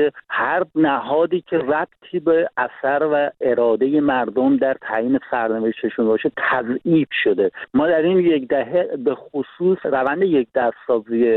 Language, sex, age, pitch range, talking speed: Persian, male, 50-69, 125-160 Hz, 130 wpm